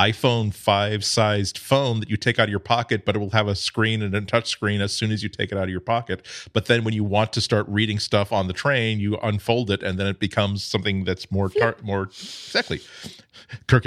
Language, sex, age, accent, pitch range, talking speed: English, male, 40-59, American, 100-120 Hz, 240 wpm